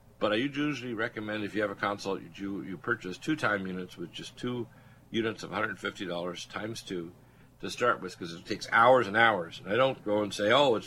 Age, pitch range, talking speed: 50-69, 95-125 Hz, 220 wpm